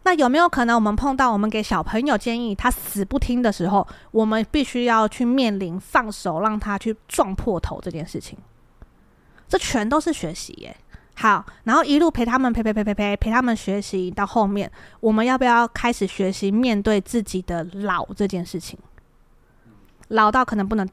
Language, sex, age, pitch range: Chinese, female, 20-39, 195-245 Hz